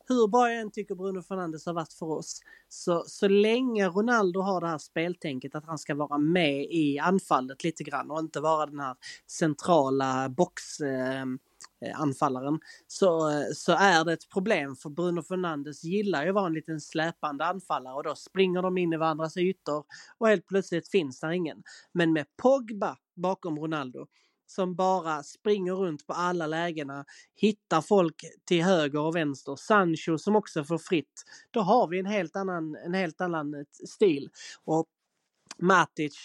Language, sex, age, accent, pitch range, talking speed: Swedish, male, 30-49, native, 150-190 Hz, 165 wpm